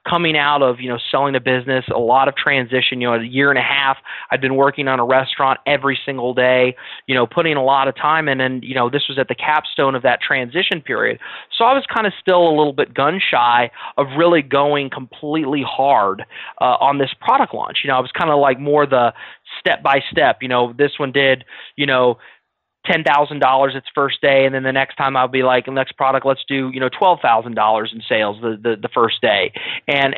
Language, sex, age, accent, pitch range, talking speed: English, male, 20-39, American, 125-150 Hz, 240 wpm